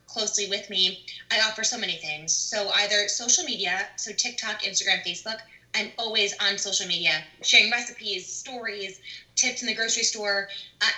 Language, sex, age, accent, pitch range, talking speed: English, female, 20-39, American, 190-230 Hz, 165 wpm